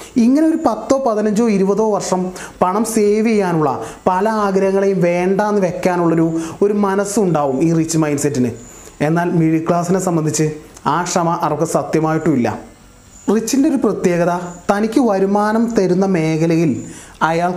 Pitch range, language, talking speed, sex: 160-205 Hz, Malayalam, 125 wpm, male